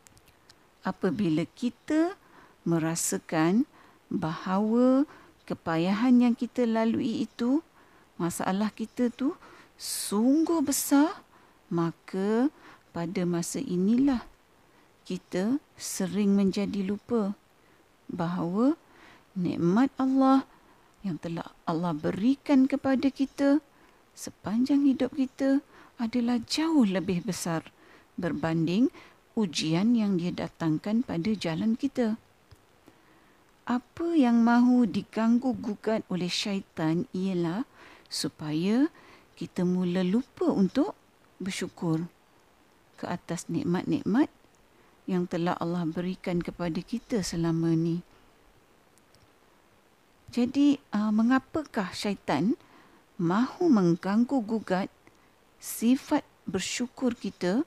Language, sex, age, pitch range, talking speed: Malay, female, 50-69, 180-265 Hz, 80 wpm